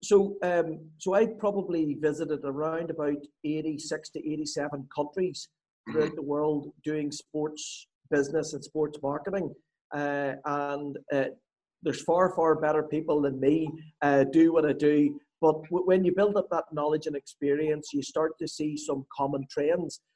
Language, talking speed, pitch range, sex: English, 160 wpm, 150-195 Hz, male